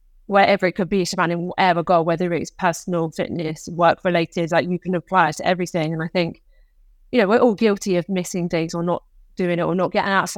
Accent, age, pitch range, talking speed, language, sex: British, 20-39, 170-195 Hz, 225 wpm, English, female